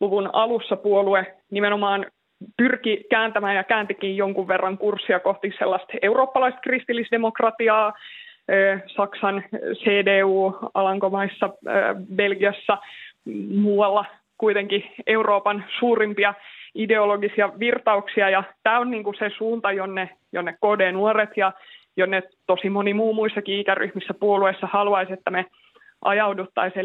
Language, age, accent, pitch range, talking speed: Finnish, 20-39, native, 195-220 Hz, 105 wpm